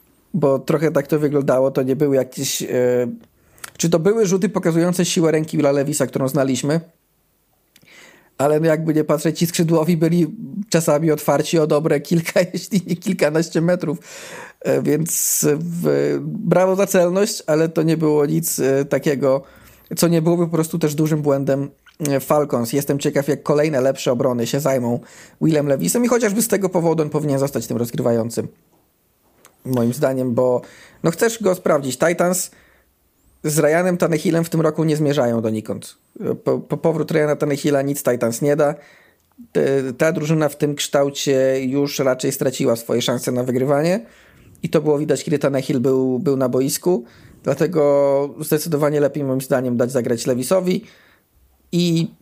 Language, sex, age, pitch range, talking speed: Polish, male, 40-59, 135-165 Hz, 155 wpm